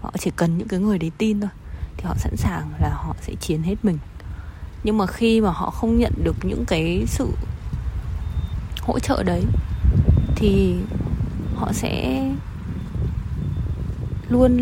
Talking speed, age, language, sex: 150 wpm, 20-39, Vietnamese, female